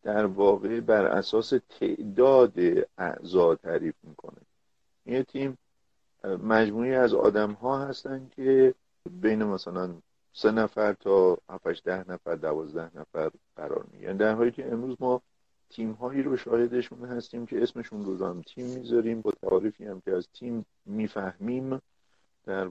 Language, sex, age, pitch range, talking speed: Persian, male, 50-69, 100-135 Hz, 130 wpm